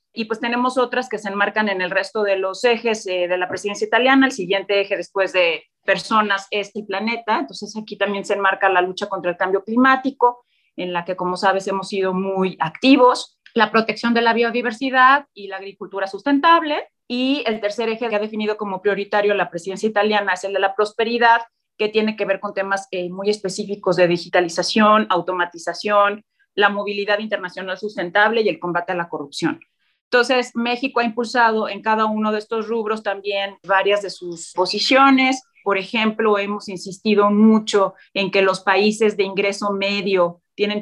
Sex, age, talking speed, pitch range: female, 30-49, 180 wpm, 190-220 Hz